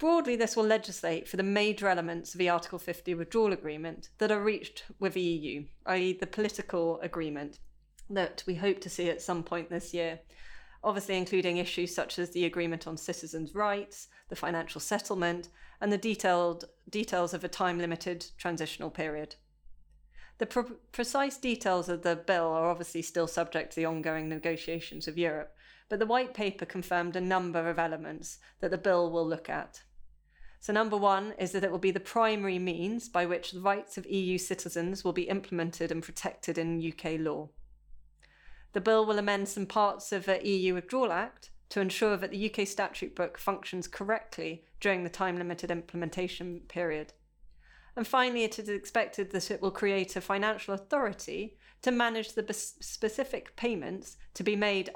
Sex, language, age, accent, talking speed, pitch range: female, English, 30-49, British, 170 wpm, 170-205 Hz